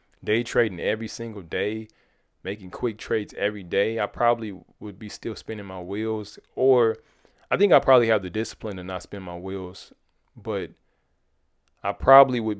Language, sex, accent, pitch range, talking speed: English, male, American, 90-110 Hz, 165 wpm